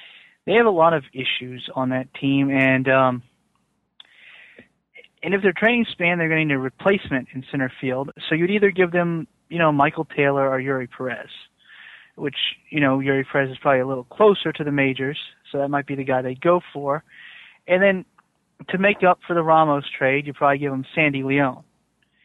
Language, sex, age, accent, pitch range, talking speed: English, male, 30-49, American, 140-180 Hz, 200 wpm